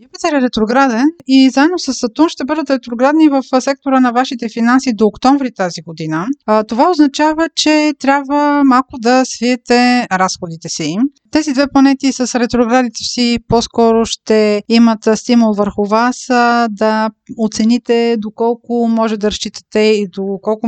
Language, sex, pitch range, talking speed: Bulgarian, female, 210-250 Hz, 140 wpm